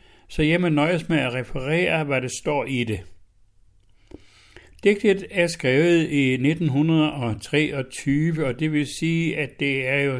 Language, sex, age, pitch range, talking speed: Danish, male, 60-79, 125-155 Hz, 140 wpm